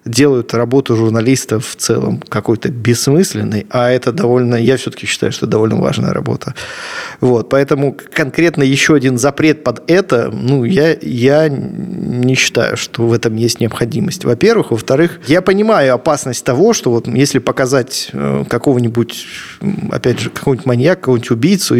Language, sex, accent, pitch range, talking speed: Russian, male, native, 115-140 Hz, 145 wpm